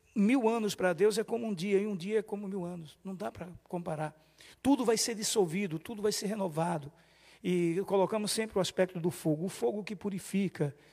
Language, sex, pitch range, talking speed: Portuguese, male, 175-225 Hz, 210 wpm